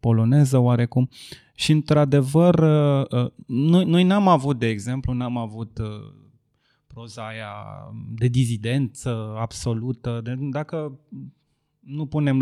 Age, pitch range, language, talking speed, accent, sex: 20-39, 120-145 Hz, Romanian, 90 wpm, native, male